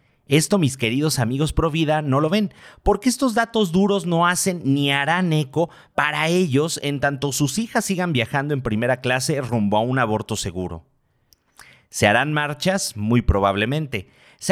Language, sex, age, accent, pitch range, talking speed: Spanish, male, 40-59, Mexican, 115-170 Hz, 165 wpm